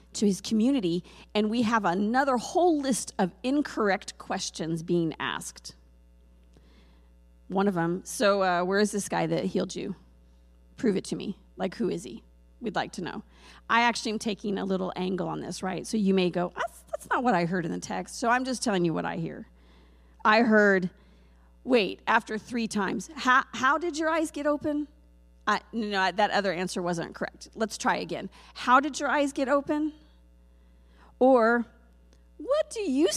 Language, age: English, 40-59